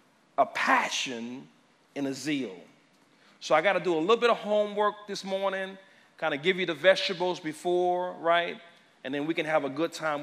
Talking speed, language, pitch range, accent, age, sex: 195 wpm, English, 155-235 Hz, American, 40-59, male